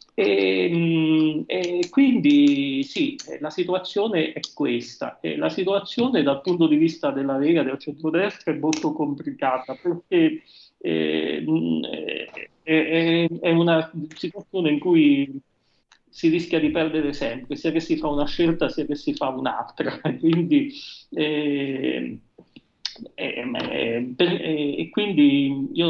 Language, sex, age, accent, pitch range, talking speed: Italian, male, 40-59, native, 135-165 Hz, 115 wpm